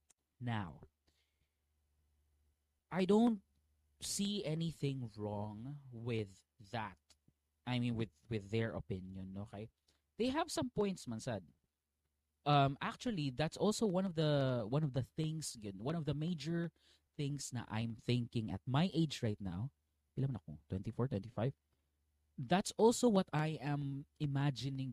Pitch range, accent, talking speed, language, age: 95-150 Hz, native, 130 wpm, Filipino, 20-39